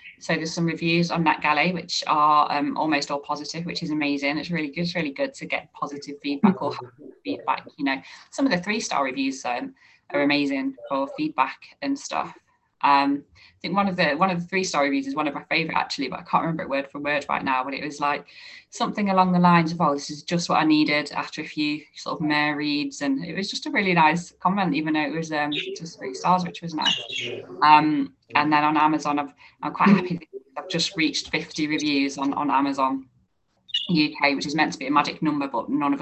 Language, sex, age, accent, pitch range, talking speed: English, female, 20-39, British, 150-185 Hz, 235 wpm